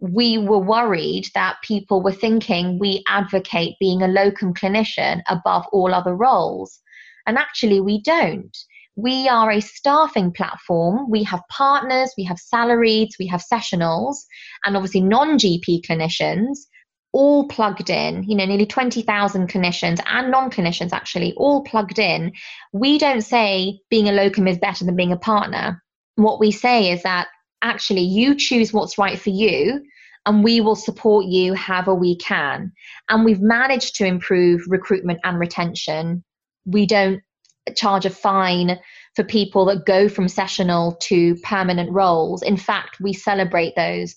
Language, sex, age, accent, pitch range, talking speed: English, female, 20-39, British, 180-220 Hz, 155 wpm